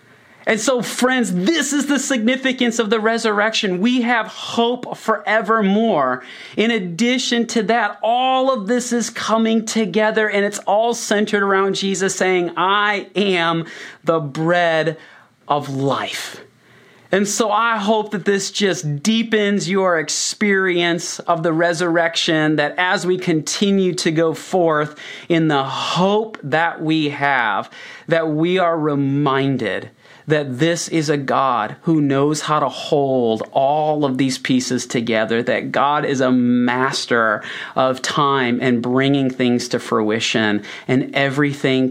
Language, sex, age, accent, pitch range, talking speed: English, male, 30-49, American, 125-205 Hz, 135 wpm